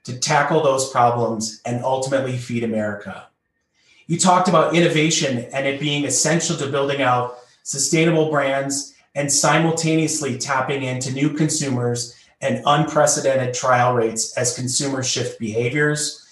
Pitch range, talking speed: 120-155 Hz, 130 wpm